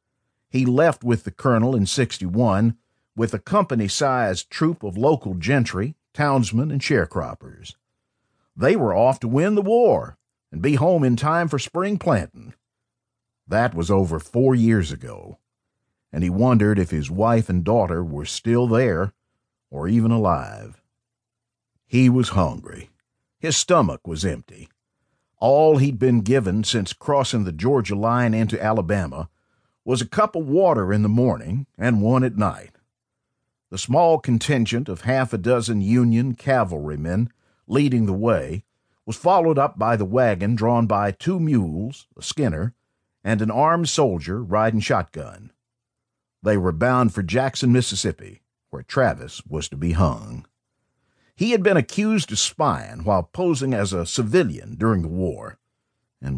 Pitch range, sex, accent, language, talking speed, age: 105-130 Hz, male, American, English, 150 wpm, 50-69